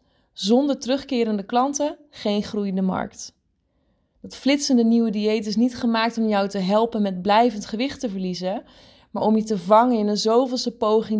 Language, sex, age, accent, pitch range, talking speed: Dutch, female, 20-39, Dutch, 205-240 Hz, 165 wpm